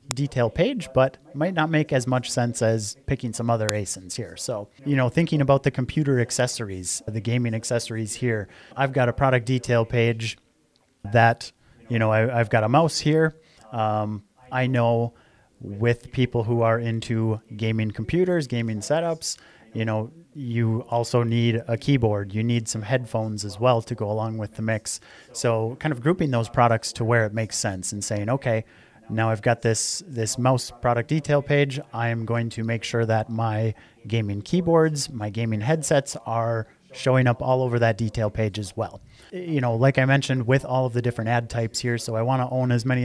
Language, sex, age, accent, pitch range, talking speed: English, male, 30-49, American, 115-130 Hz, 190 wpm